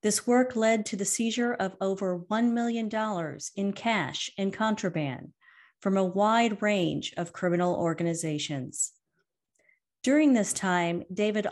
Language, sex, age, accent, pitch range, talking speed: English, female, 40-59, American, 180-235 Hz, 130 wpm